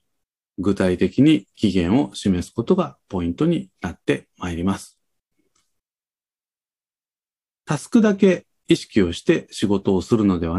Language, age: Japanese, 40-59